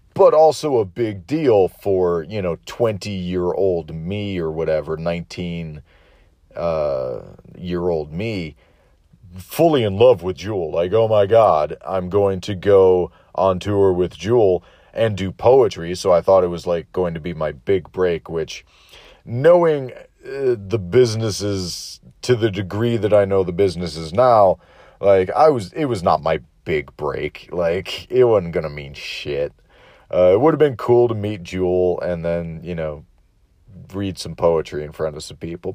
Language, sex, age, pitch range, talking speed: English, male, 40-59, 85-120 Hz, 170 wpm